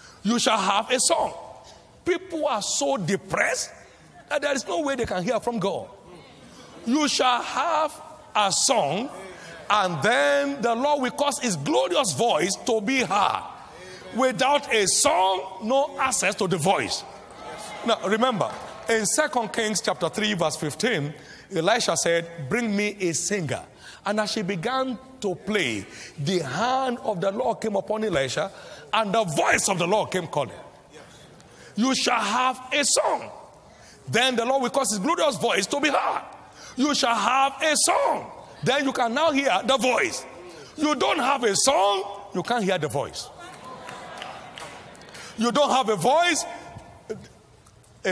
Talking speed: 155 wpm